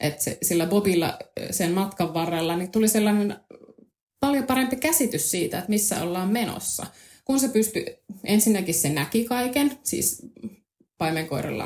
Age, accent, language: 20-39, native, Finnish